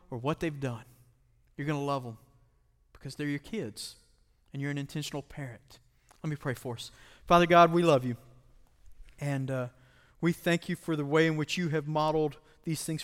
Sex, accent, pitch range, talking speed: male, American, 110-150 Hz, 200 wpm